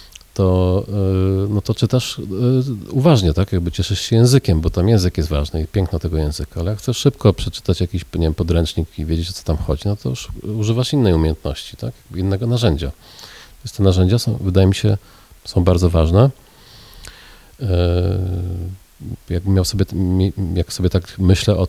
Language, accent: Polish, native